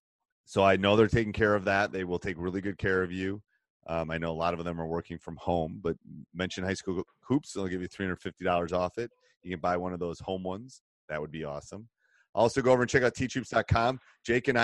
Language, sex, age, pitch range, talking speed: English, male, 30-49, 95-115 Hz, 240 wpm